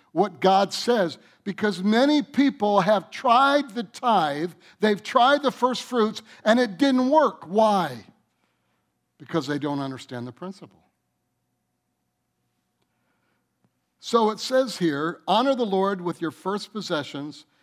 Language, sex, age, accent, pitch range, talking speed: English, male, 60-79, American, 160-240 Hz, 125 wpm